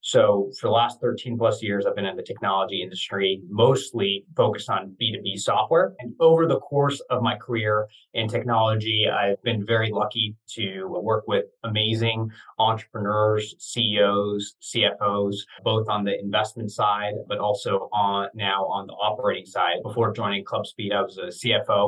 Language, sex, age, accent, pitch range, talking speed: English, male, 30-49, American, 100-120 Hz, 160 wpm